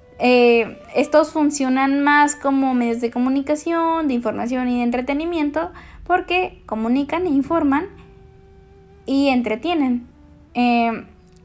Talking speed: 105 wpm